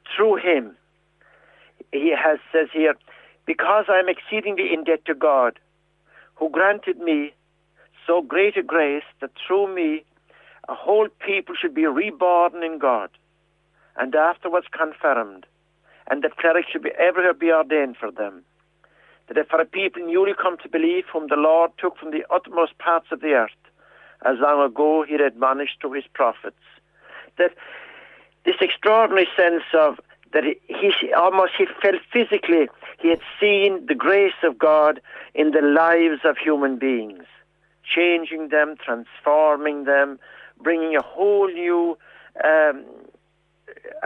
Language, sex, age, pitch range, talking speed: English, male, 60-79, 155-190 Hz, 140 wpm